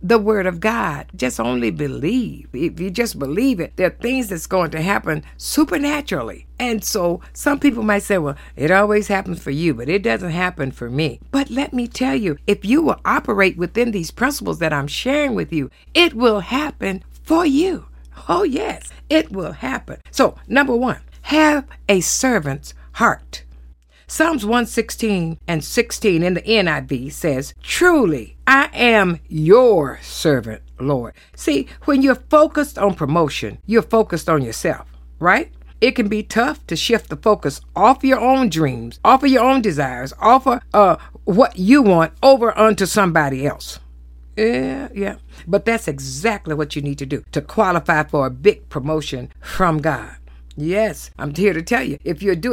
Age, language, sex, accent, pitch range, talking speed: 60-79, English, female, American, 150-240 Hz, 175 wpm